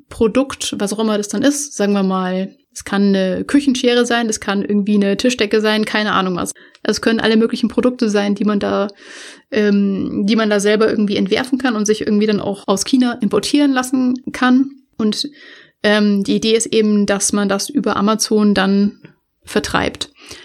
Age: 30-49